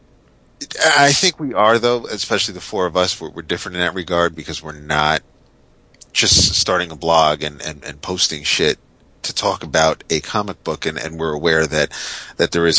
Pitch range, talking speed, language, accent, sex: 75-90 Hz, 190 wpm, English, American, male